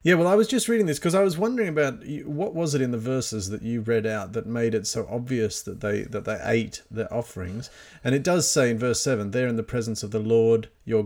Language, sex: English, male